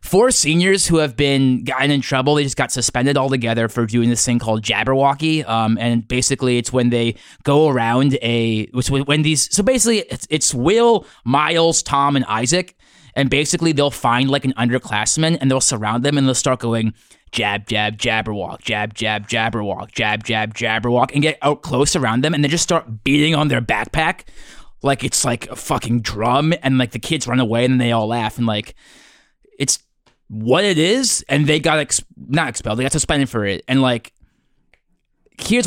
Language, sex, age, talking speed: English, male, 20-39, 190 wpm